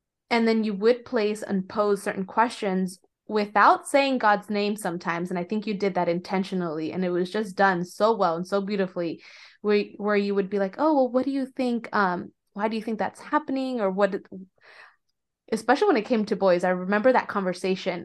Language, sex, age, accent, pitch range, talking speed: English, female, 20-39, American, 185-215 Hz, 205 wpm